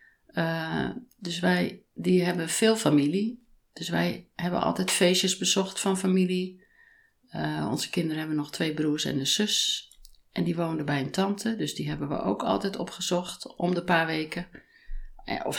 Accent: Dutch